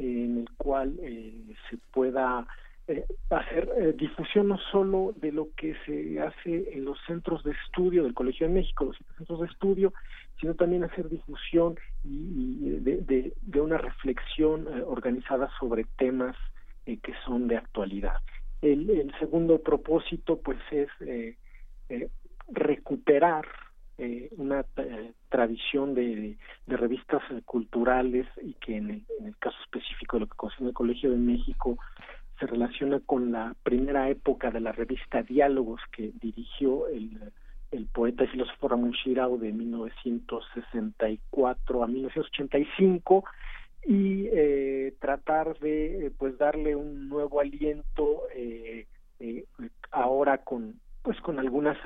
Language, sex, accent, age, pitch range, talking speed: Spanish, male, Mexican, 50-69, 120-155 Hz, 140 wpm